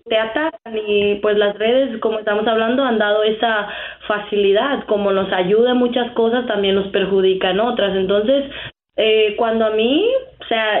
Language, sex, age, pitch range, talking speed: Spanish, female, 20-39, 205-260 Hz, 165 wpm